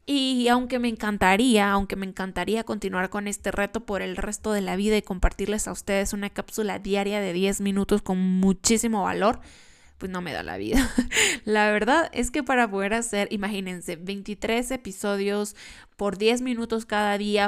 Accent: Mexican